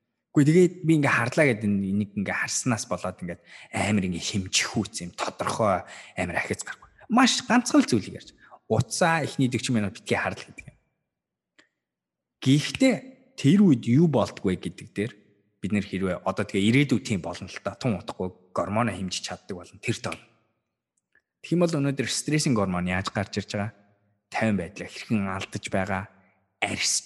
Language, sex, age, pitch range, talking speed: English, male, 20-39, 95-140 Hz, 130 wpm